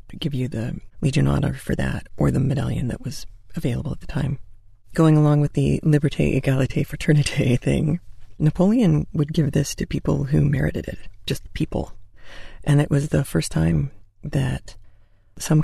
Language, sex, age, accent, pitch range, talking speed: English, female, 40-59, American, 105-160 Hz, 165 wpm